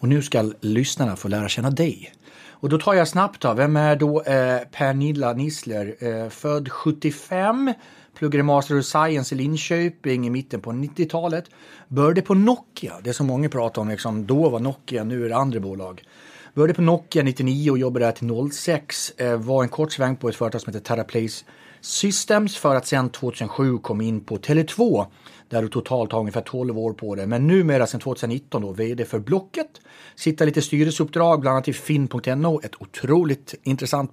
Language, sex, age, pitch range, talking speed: English, male, 30-49, 120-155 Hz, 190 wpm